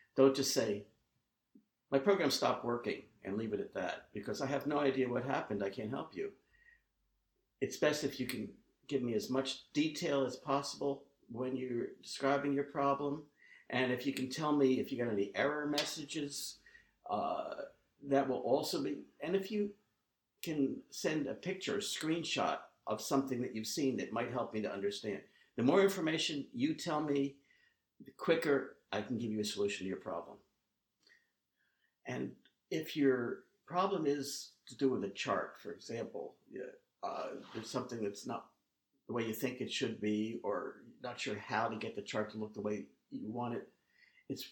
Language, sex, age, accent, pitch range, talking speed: English, male, 50-69, American, 110-150 Hz, 180 wpm